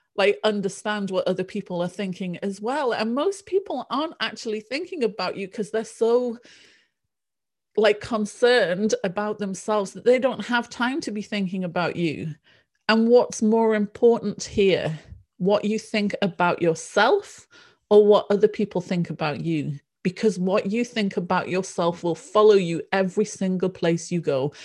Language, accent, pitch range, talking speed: English, British, 160-215 Hz, 160 wpm